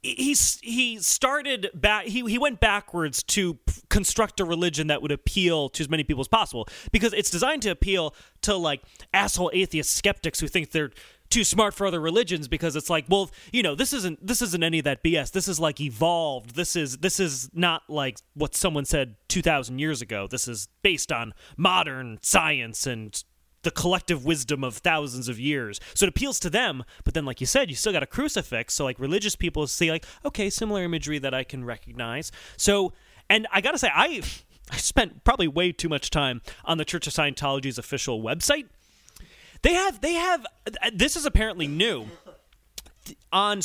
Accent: American